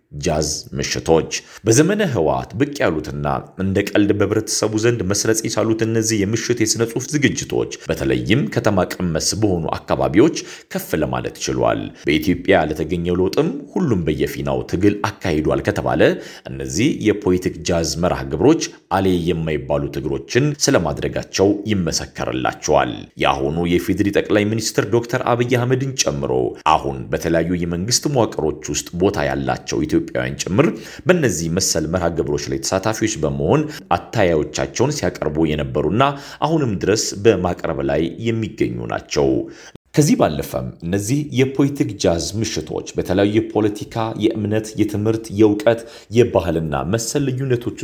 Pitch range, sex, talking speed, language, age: 75-110 Hz, male, 105 wpm, Amharic, 40-59